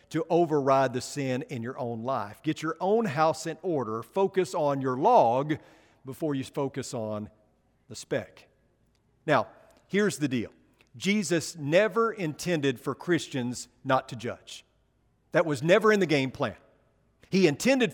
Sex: male